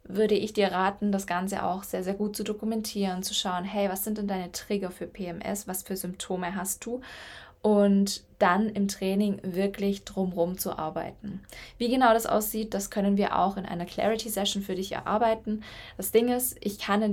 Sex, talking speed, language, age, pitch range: female, 195 wpm, German, 10-29, 185-210 Hz